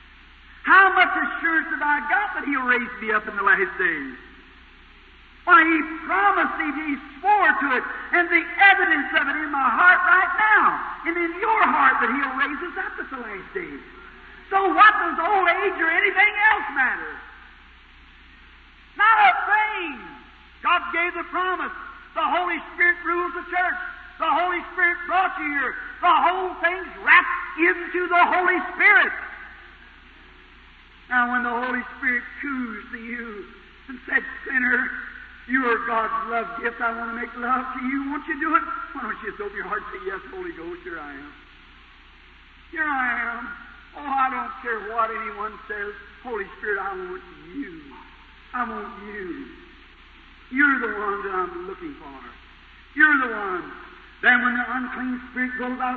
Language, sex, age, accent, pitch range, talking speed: English, male, 50-69, American, 250-360 Hz, 170 wpm